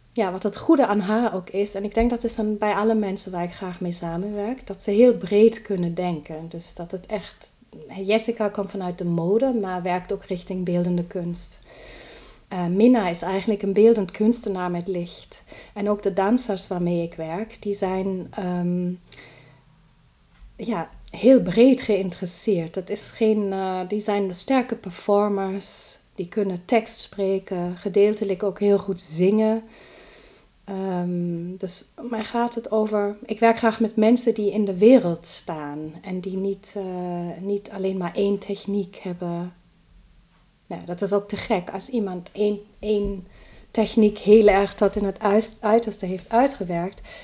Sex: female